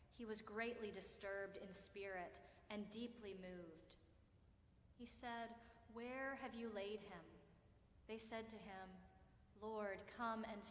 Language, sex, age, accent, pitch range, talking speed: English, female, 30-49, American, 195-240 Hz, 130 wpm